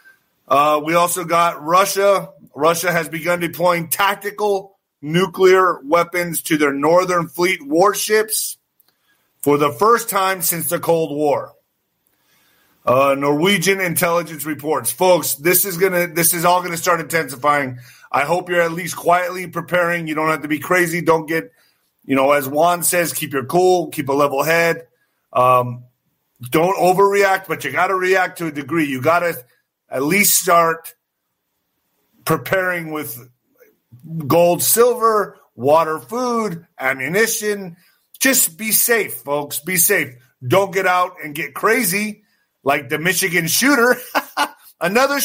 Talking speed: 140 wpm